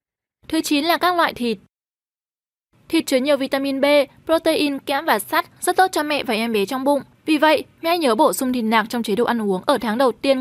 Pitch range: 230-300 Hz